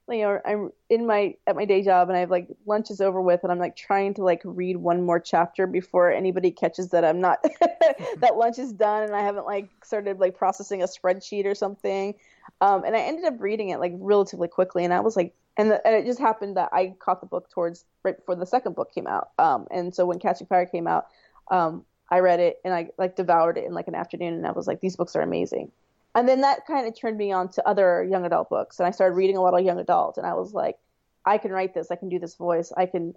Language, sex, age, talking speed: English, female, 20-39, 265 wpm